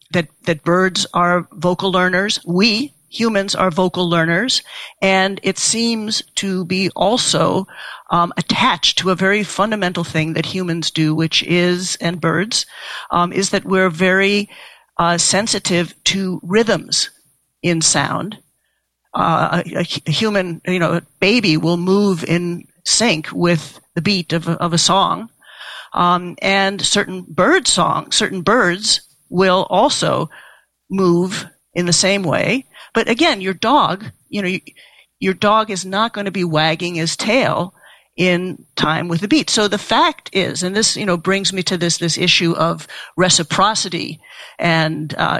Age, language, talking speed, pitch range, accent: 50-69, English, 150 wpm, 170-200 Hz, American